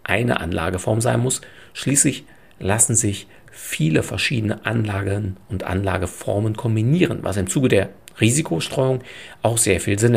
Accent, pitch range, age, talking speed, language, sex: German, 100-140 Hz, 50-69, 130 wpm, German, male